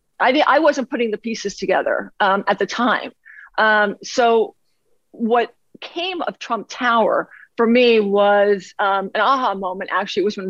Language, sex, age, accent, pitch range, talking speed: English, female, 40-59, American, 200-240 Hz, 160 wpm